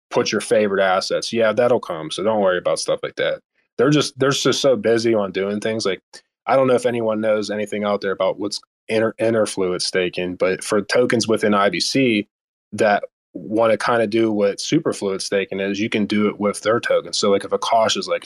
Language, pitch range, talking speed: English, 100-120 Hz, 220 wpm